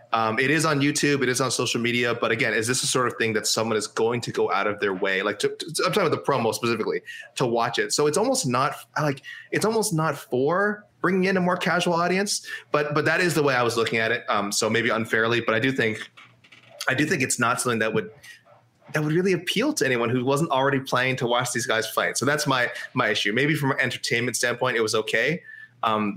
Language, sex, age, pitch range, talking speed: English, male, 20-39, 110-180 Hz, 250 wpm